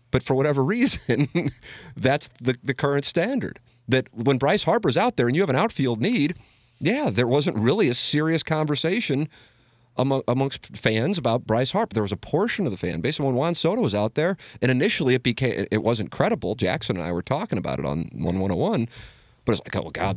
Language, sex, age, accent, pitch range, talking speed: English, male, 40-59, American, 105-140 Hz, 210 wpm